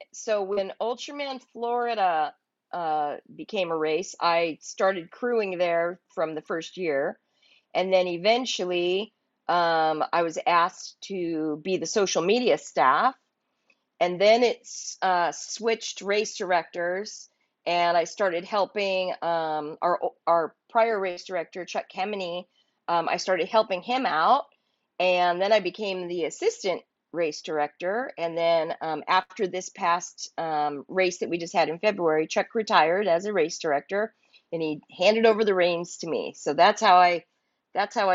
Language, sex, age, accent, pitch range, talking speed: English, female, 40-59, American, 170-220 Hz, 150 wpm